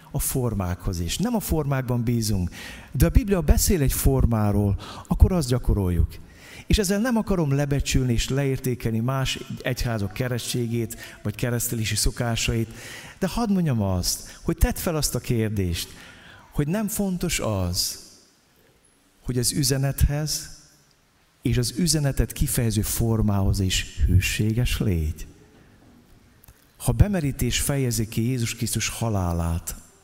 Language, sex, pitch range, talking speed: Hungarian, male, 95-135 Hz, 120 wpm